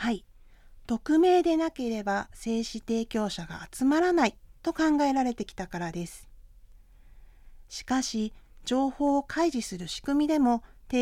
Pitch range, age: 200-280 Hz, 40-59